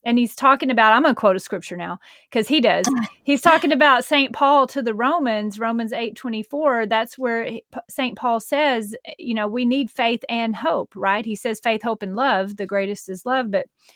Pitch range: 215-265 Hz